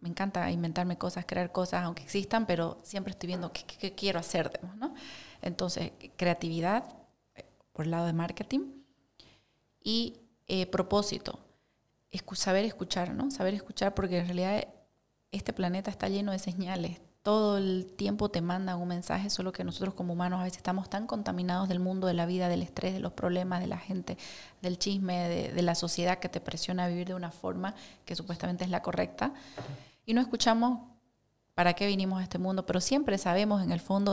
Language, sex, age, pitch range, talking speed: Spanish, female, 30-49, 180-205 Hz, 190 wpm